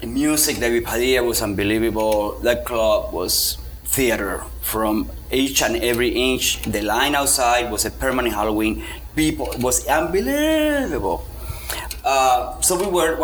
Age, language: 30-49, English